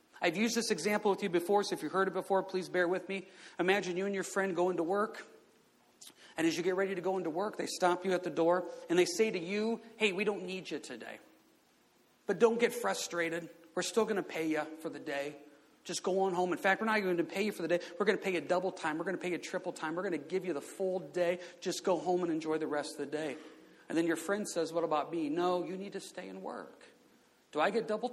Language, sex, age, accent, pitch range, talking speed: English, male, 40-59, American, 175-235 Hz, 275 wpm